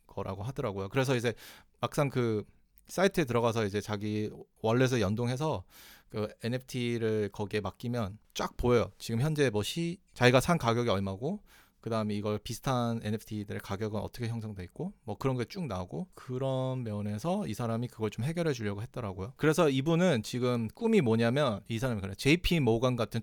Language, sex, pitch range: Korean, male, 105-140 Hz